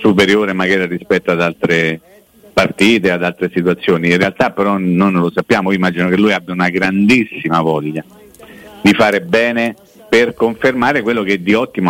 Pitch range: 90-110 Hz